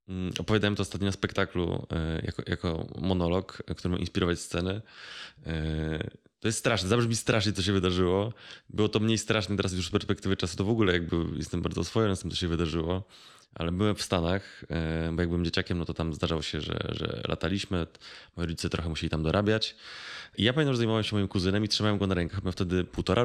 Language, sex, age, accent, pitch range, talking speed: Polish, male, 20-39, native, 90-110 Hz, 200 wpm